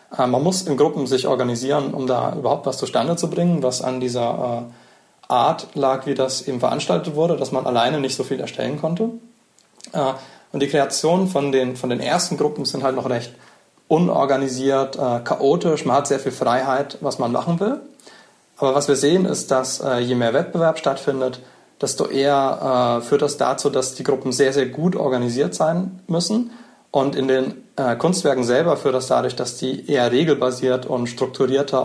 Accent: German